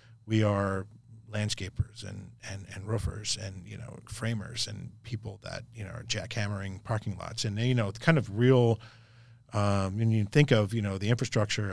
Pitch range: 105-125 Hz